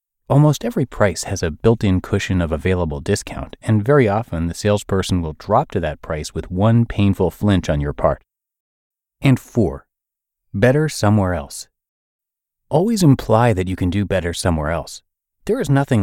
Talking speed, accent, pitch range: 165 wpm, American, 85-115 Hz